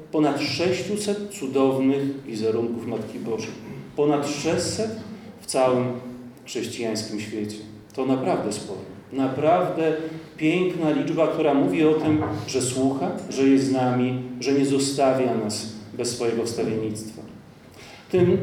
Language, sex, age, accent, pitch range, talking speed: Polish, male, 40-59, native, 115-155 Hz, 115 wpm